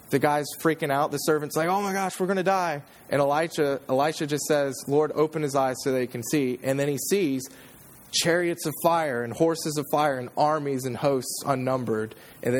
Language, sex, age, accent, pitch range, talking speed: English, male, 20-39, American, 125-160 Hz, 210 wpm